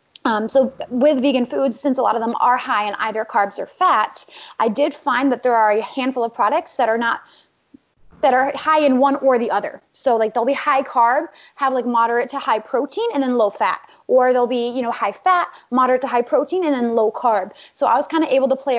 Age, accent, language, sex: 20-39, American, English, female